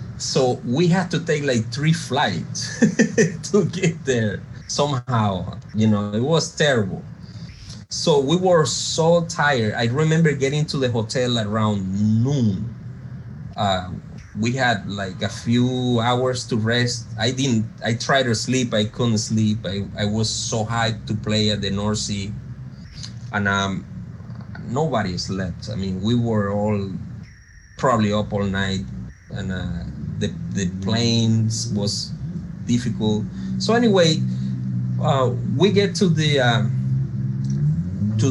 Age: 30-49